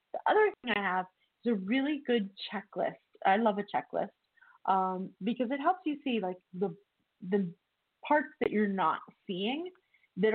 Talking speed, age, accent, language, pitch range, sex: 170 wpm, 30-49, American, English, 200-240 Hz, female